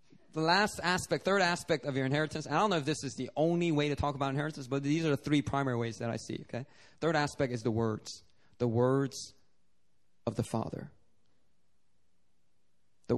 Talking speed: 195 wpm